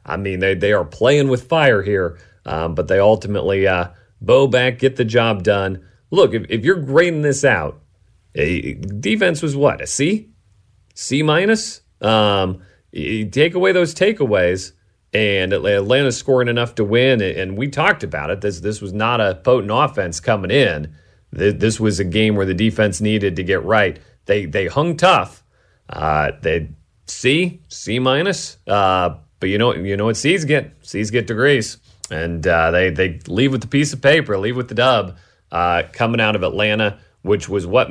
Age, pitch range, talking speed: 40-59, 95-125 Hz, 185 wpm